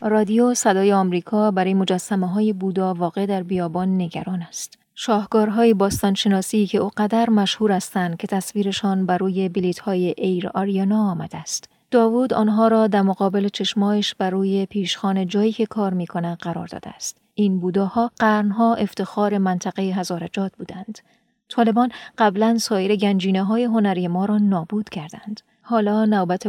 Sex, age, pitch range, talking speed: female, 30-49, 190-215 Hz, 140 wpm